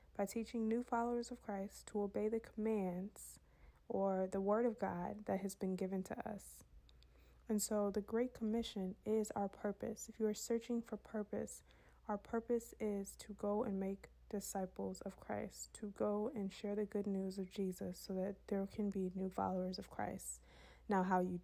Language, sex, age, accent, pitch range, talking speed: English, female, 20-39, American, 190-215 Hz, 185 wpm